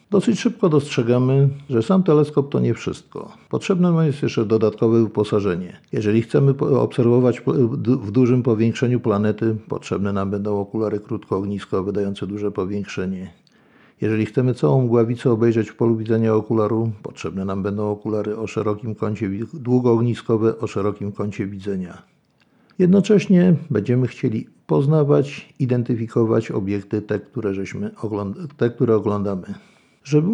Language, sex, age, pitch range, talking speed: Polish, male, 50-69, 105-130 Hz, 130 wpm